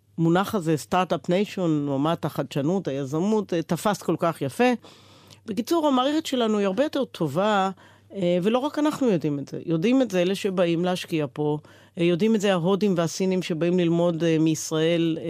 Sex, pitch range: female, 155-210 Hz